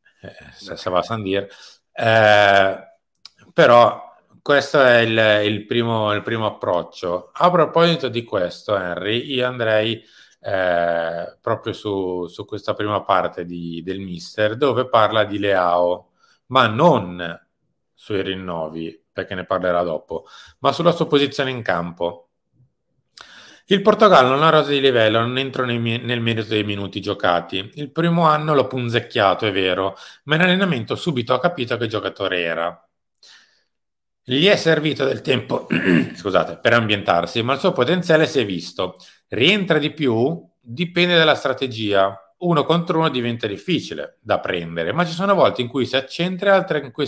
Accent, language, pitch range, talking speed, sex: native, Italian, 95-145 Hz, 155 wpm, male